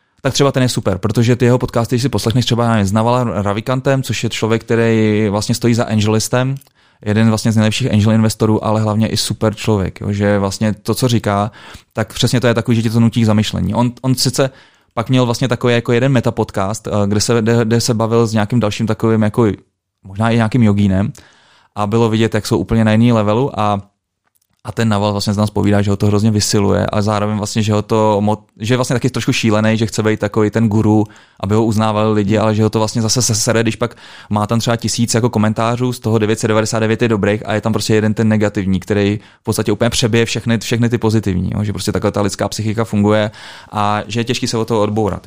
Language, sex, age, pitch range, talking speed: Czech, male, 20-39, 105-120 Hz, 230 wpm